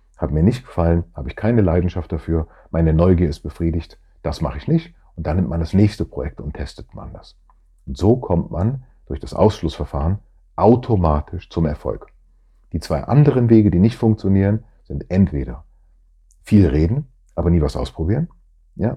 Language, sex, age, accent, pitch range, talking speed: German, male, 40-59, German, 80-105 Hz, 170 wpm